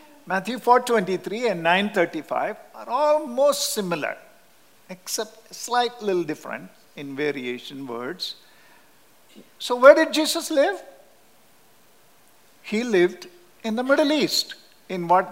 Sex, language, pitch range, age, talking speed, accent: male, English, 175-245 Hz, 50-69, 110 wpm, Indian